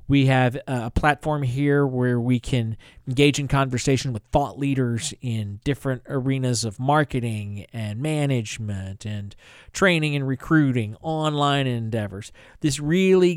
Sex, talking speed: male, 130 wpm